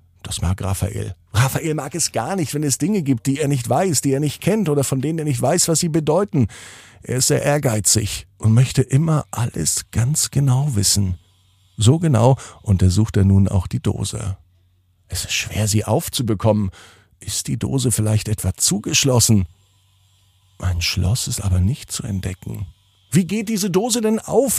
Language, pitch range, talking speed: German, 100-150 Hz, 175 wpm